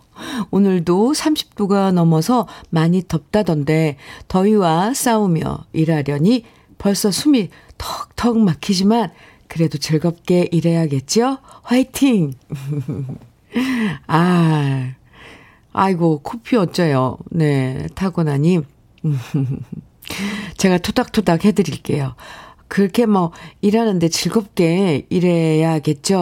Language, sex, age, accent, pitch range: Korean, female, 50-69, native, 155-215 Hz